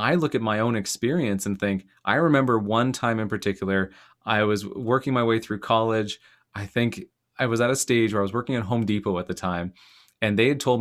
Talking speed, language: 235 wpm, English